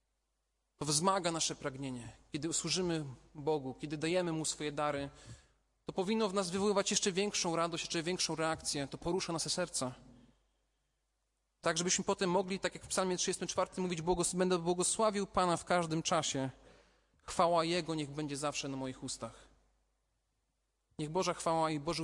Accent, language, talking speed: native, Polish, 150 wpm